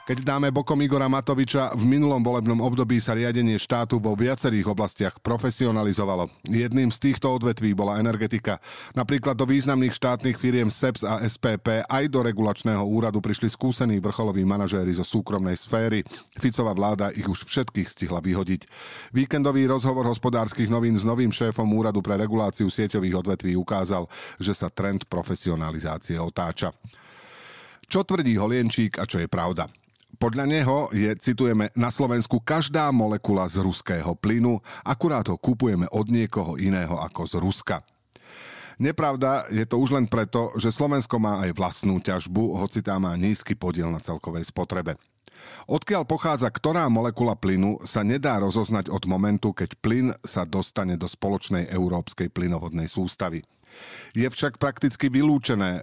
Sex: male